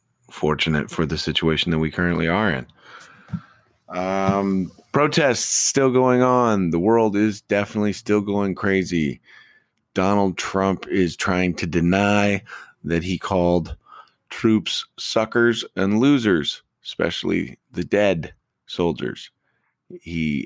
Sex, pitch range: male, 85-105 Hz